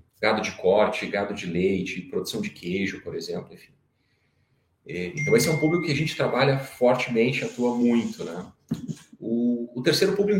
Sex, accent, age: male, Brazilian, 30-49